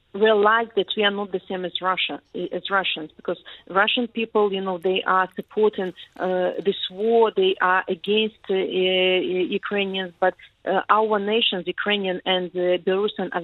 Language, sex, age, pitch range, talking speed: English, female, 40-59, 185-205 Hz, 165 wpm